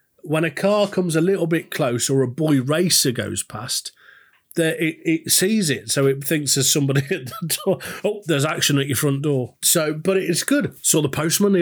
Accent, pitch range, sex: British, 140-175 Hz, male